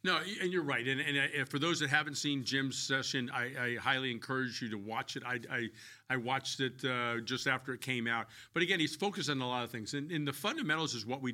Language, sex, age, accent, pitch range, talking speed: English, male, 50-69, American, 115-140 Hz, 260 wpm